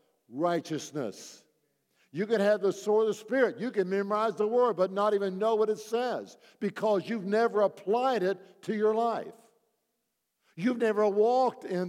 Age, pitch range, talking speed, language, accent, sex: 60-79, 180-220 Hz, 165 wpm, English, American, male